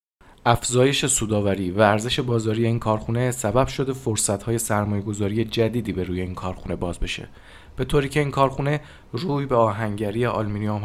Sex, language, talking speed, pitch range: male, Persian, 150 wpm, 100-120 Hz